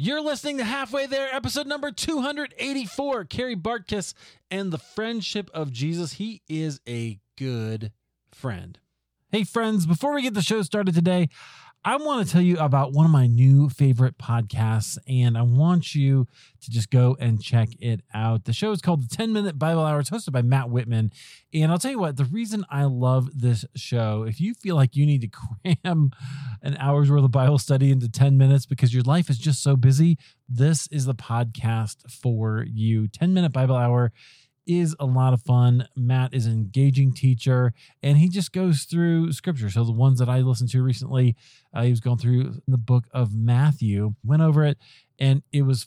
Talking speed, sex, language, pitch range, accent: 195 wpm, male, English, 120-160 Hz, American